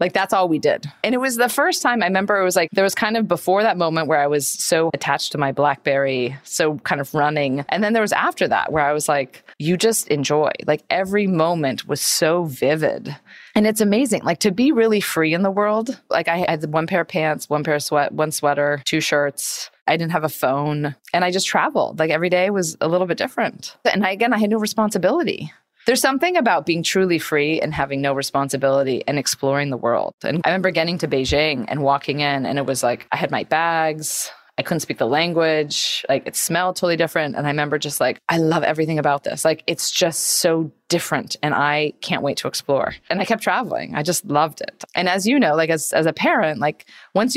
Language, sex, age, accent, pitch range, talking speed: English, female, 20-39, American, 145-190 Hz, 235 wpm